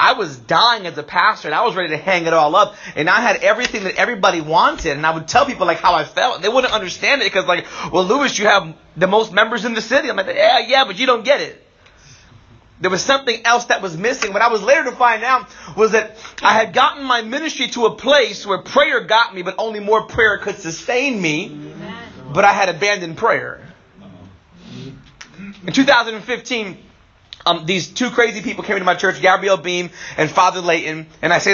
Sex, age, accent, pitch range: male, 30-49, American, 170-220 Hz